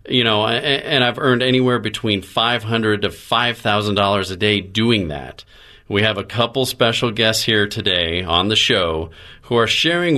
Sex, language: male, English